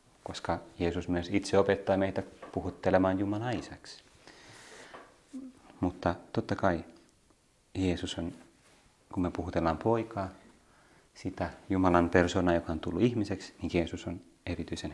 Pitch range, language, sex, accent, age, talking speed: 85-100 Hz, Finnish, male, native, 30-49, 115 wpm